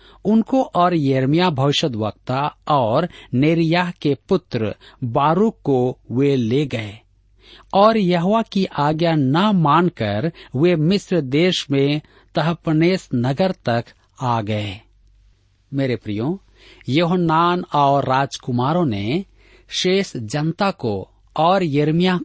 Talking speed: 110 wpm